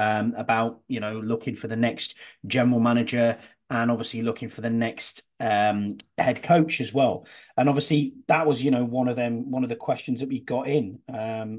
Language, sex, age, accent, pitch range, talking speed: English, male, 30-49, British, 115-145 Hz, 200 wpm